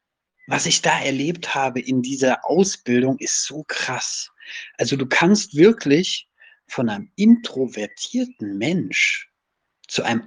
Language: German